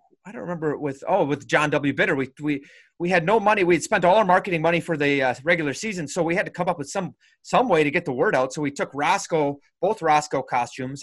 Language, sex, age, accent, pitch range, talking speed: English, male, 30-49, American, 135-175 Hz, 265 wpm